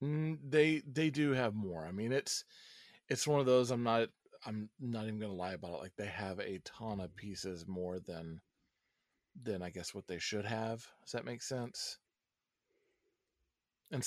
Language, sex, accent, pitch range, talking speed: English, male, American, 90-125 Hz, 180 wpm